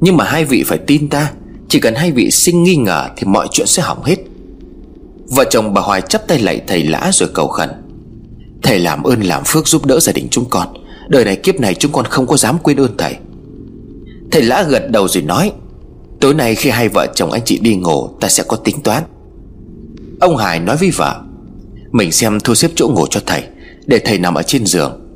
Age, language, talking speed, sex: 30-49, Vietnamese, 225 wpm, male